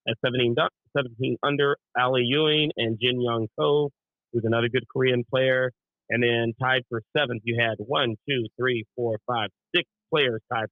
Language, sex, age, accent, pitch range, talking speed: English, male, 40-59, American, 110-130 Hz, 170 wpm